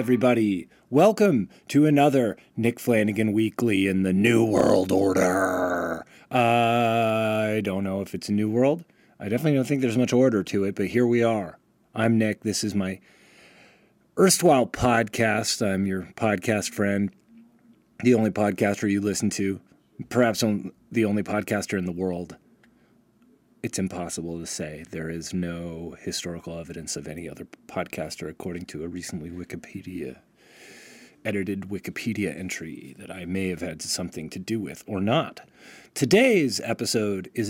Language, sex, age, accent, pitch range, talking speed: English, male, 30-49, American, 95-120 Hz, 150 wpm